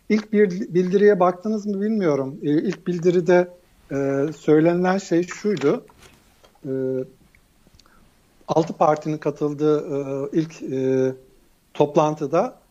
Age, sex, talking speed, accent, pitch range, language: 60-79, male, 75 wpm, native, 150-195 Hz, Turkish